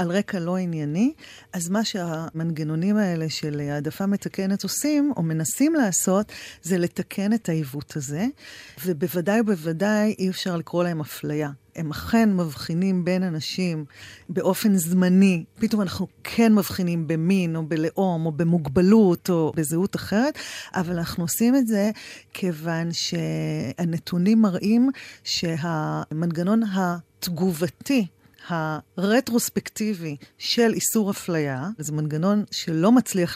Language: Hebrew